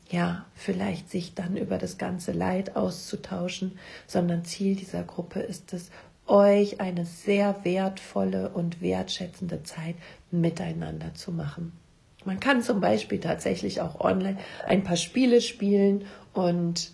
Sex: female